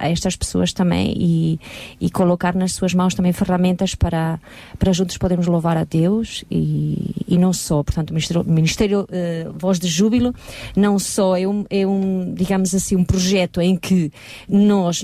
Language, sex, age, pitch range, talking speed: Portuguese, female, 30-49, 180-215 Hz, 180 wpm